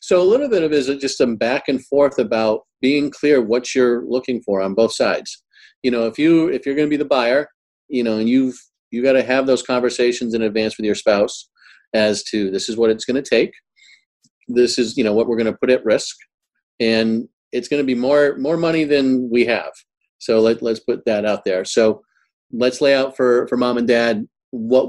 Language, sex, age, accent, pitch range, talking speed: English, male, 40-59, American, 110-135 Hz, 230 wpm